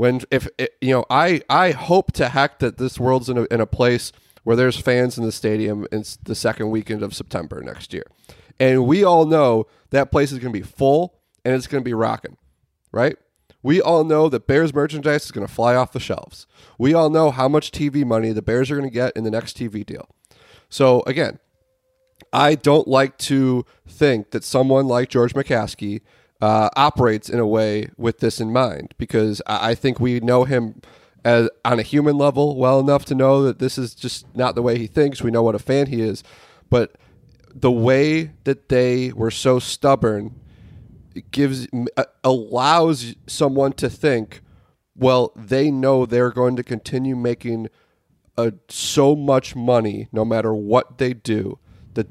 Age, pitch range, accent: 30-49, 115-135 Hz, American